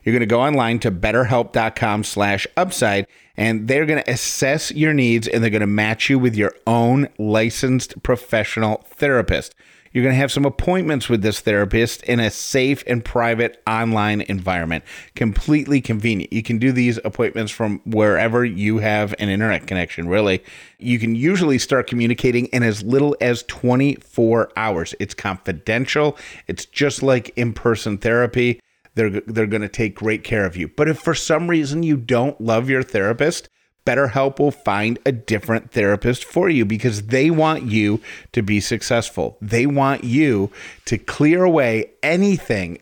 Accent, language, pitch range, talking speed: American, English, 110-130 Hz, 165 wpm